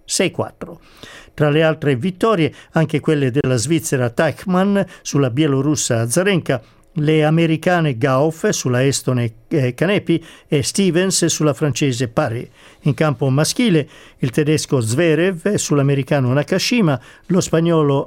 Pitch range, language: 130-165 Hz, Italian